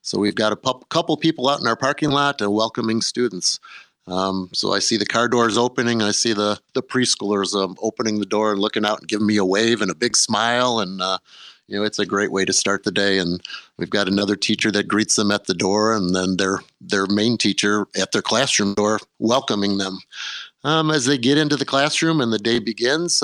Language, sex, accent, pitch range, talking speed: English, male, American, 105-125 Hz, 230 wpm